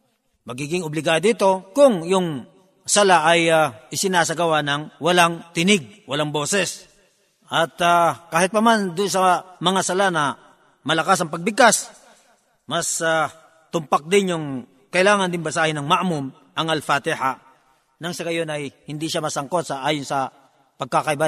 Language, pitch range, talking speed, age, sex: Filipino, 150-205 Hz, 140 wpm, 40-59, male